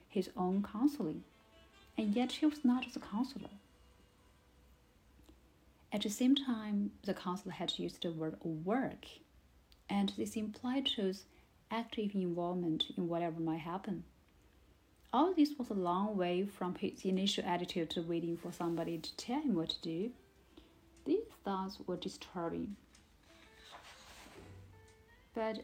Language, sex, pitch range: Chinese, female, 165-220 Hz